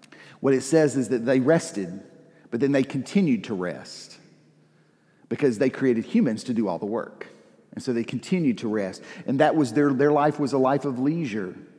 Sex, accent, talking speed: male, American, 200 wpm